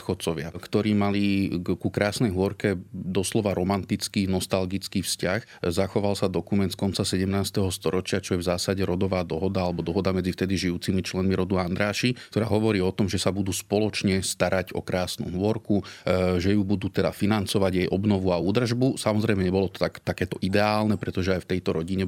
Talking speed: 170 wpm